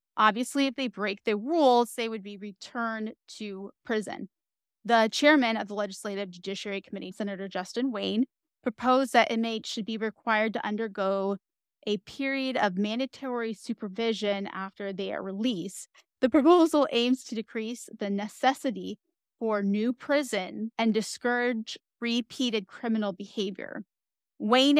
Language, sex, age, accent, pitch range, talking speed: English, female, 20-39, American, 205-240 Hz, 135 wpm